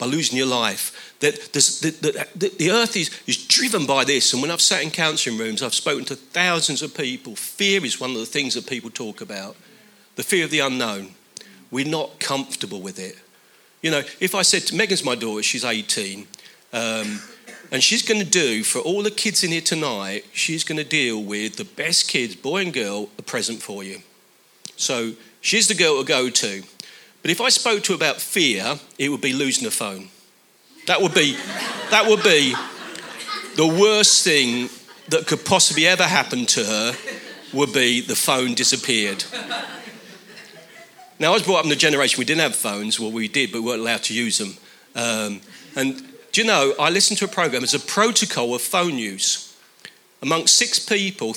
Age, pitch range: 40-59, 120-185 Hz